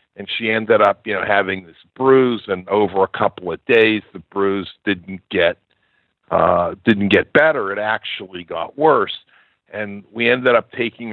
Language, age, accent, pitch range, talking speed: English, 50-69, American, 95-115 Hz, 175 wpm